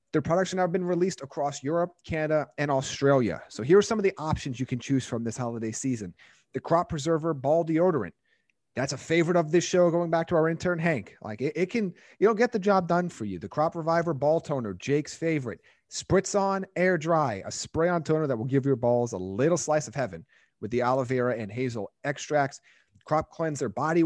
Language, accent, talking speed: English, American, 220 wpm